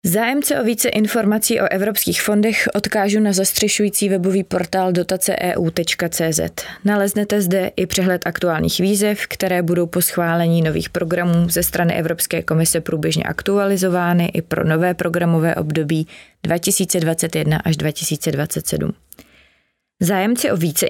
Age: 20-39